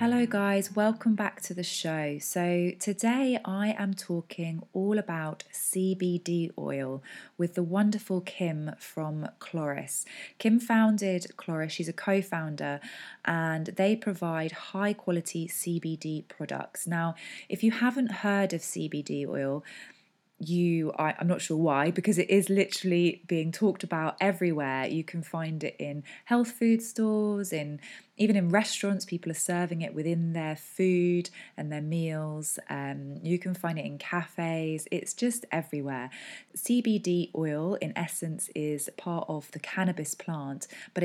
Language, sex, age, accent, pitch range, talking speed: English, female, 20-39, British, 155-195 Hz, 145 wpm